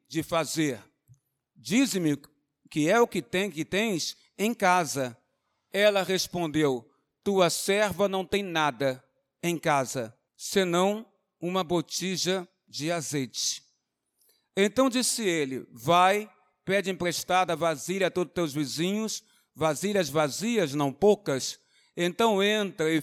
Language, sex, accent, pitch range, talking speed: Portuguese, male, Brazilian, 160-205 Hz, 115 wpm